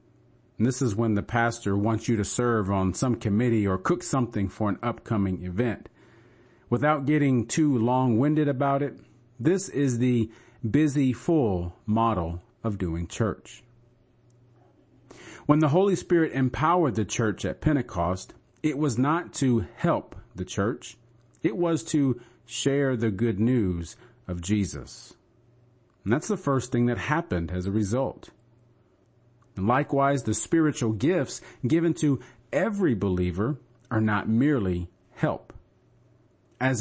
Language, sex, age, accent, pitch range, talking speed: English, male, 40-59, American, 105-135 Hz, 135 wpm